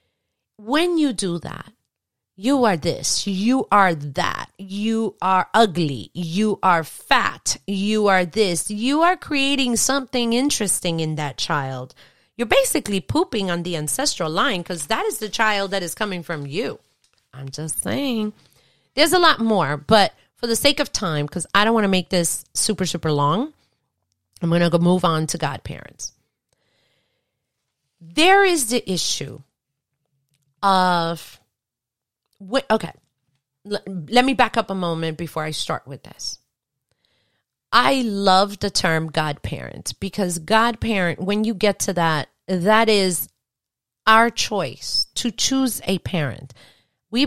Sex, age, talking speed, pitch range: female, 30-49, 145 wpm, 160-235 Hz